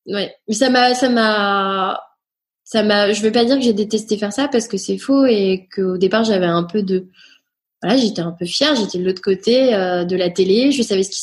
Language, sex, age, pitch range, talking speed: French, female, 20-39, 195-245 Hz, 245 wpm